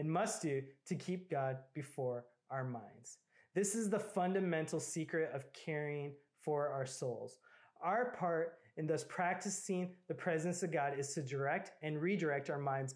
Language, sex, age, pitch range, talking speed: English, male, 20-39, 140-180 Hz, 160 wpm